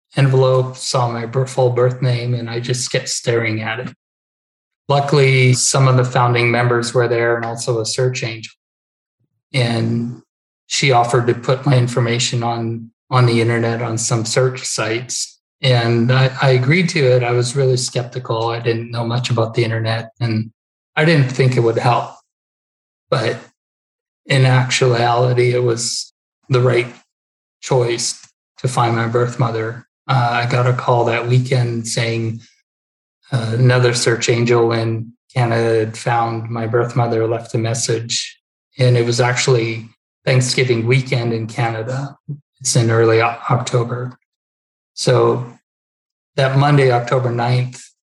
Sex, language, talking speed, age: male, English, 145 wpm, 20-39